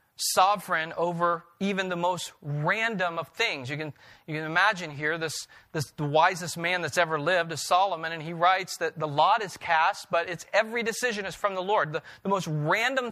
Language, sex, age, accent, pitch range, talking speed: English, male, 40-59, American, 155-195 Hz, 200 wpm